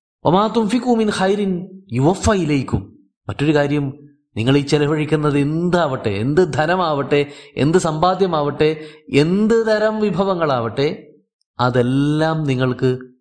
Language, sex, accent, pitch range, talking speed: Malayalam, male, native, 125-180 Hz, 80 wpm